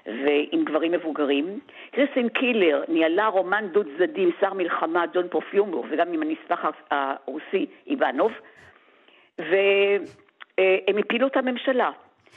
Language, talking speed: Hebrew, 105 wpm